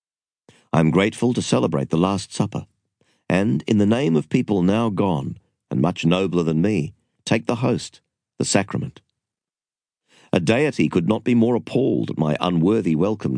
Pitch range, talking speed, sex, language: 80-110 Hz, 165 wpm, male, English